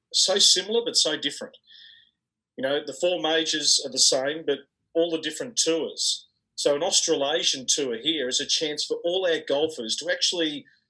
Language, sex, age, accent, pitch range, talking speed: English, male, 40-59, Australian, 135-205 Hz, 175 wpm